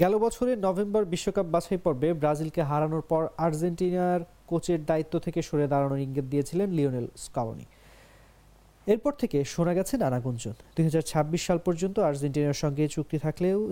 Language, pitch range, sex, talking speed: English, 150-190 Hz, male, 130 wpm